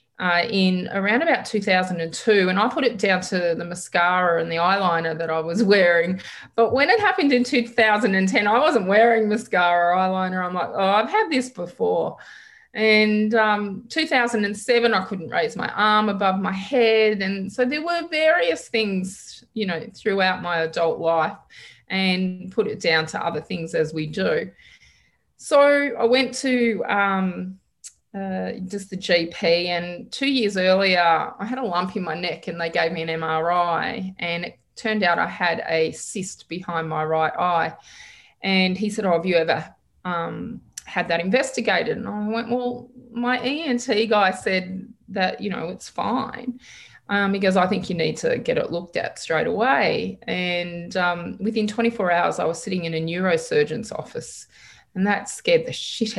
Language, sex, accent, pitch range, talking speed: English, female, Australian, 175-230 Hz, 175 wpm